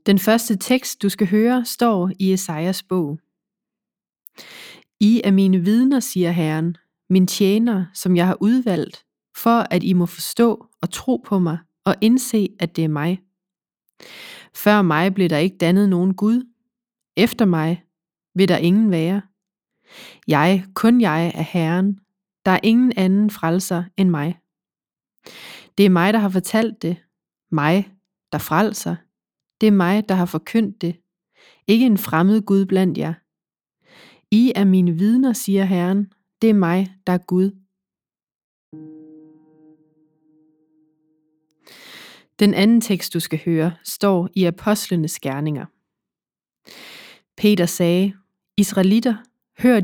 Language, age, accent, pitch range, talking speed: Danish, 30-49, native, 170-210 Hz, 135 wpm